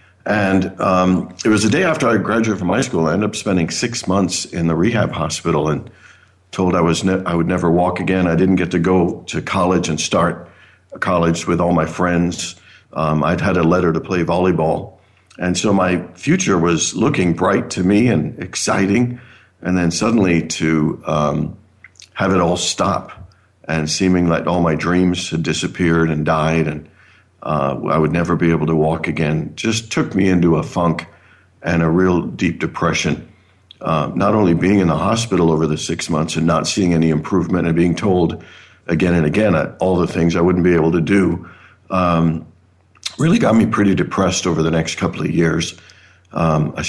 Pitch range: 80-95 Hz